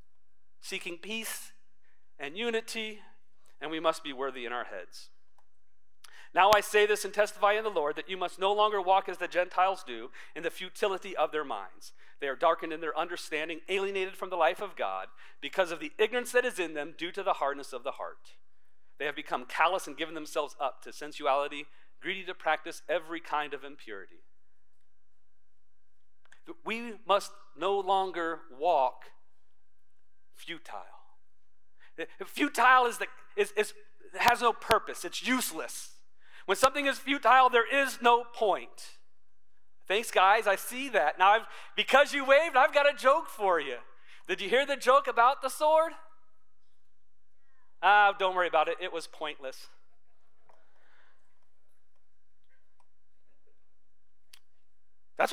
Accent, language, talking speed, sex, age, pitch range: American, English, 150 wpm, male, 40-59, 150-240 Hz